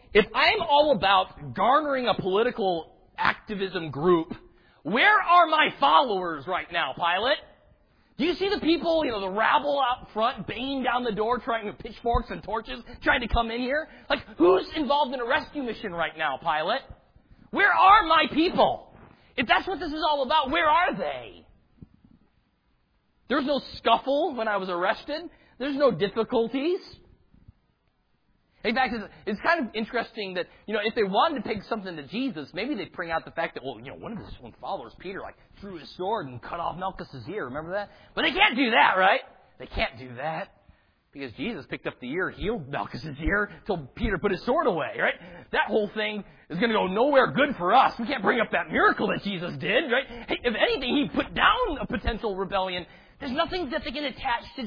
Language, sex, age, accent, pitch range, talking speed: English, male, 30-49, American, 200-295 Hz, 200 wpm